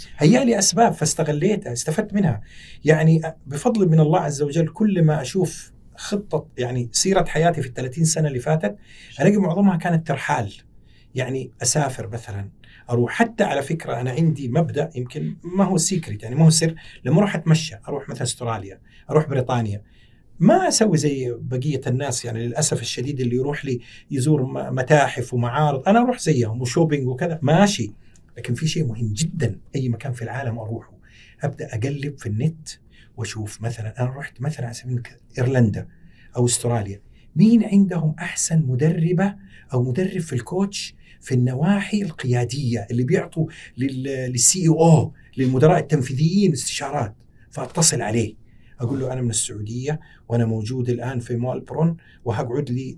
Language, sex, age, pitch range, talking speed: Arabic, male, 40-59, 120-165 Hz, 145 wpm